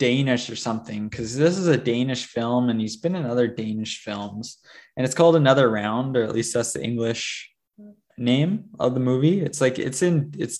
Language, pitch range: English, 115-135 Hz